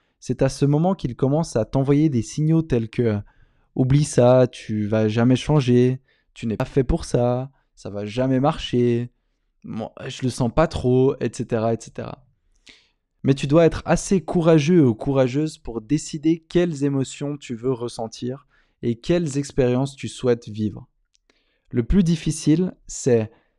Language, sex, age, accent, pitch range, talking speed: French, male, 20-39, French, 120-155 Hz, 170 wpm